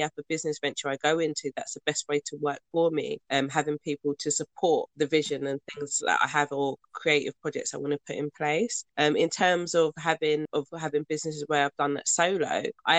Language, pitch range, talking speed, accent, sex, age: English, 145-160 Hz, 235 wpm, British, female, 20-39